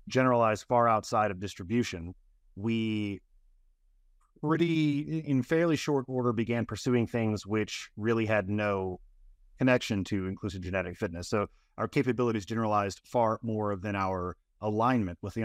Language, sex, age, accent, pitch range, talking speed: English, male, 30-49, American, 100-125 Hz, 130 wpm